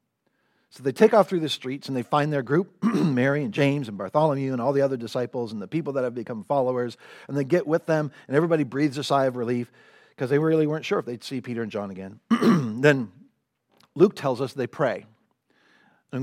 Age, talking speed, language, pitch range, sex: 40-59, 220 wpm, English, 125-180 Hz, male